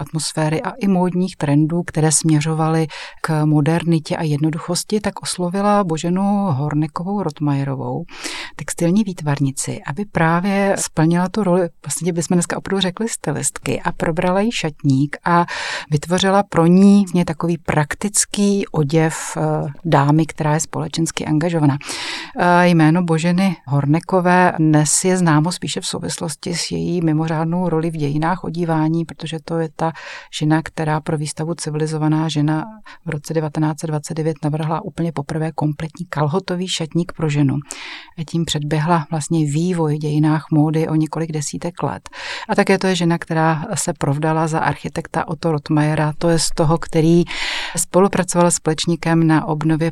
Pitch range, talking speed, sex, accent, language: 155-175 Hz, 140 wpm, female, native, Czech